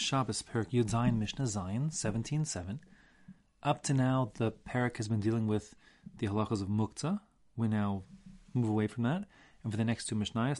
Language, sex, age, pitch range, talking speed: English, male, 30-49, 105-140 Hz, 175 wpm